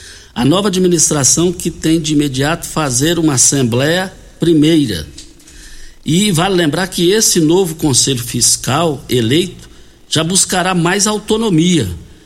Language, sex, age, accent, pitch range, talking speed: Portuguese, male, 60-79, Brazilian, 120-170 Hz, 115 wpm